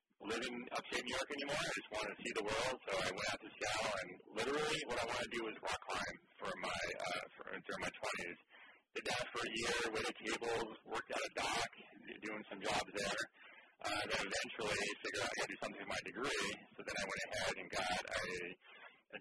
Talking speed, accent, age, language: 230 wpm, American, 40-59, English